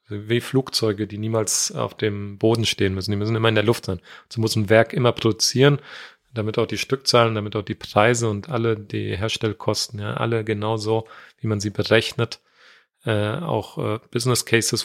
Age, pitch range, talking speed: 40-59, 110-135 Hz, 190 wpm